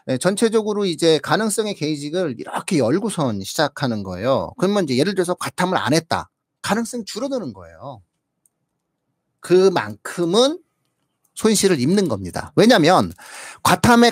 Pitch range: 130-210 Hz